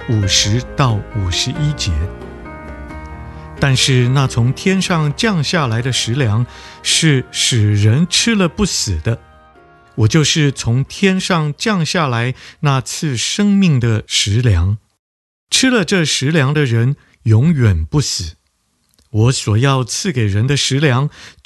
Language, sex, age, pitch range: Chinese, male, 50-69, 100-150 Hz